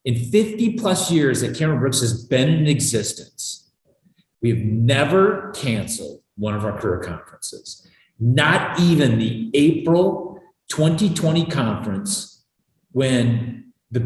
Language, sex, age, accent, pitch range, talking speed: English, male, 40-59, American, 120-165 Hz, 115 wpm